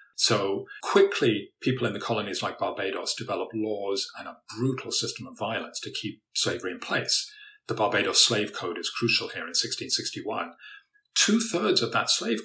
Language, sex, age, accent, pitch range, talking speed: English, male, 40-59, British, 115-165 Hz, 165 wpm